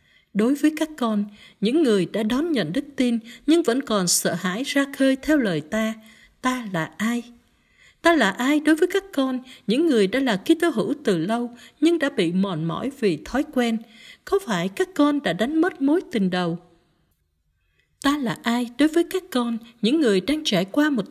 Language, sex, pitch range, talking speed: Vietnamese, female, 185-285 Hz, 200 wpm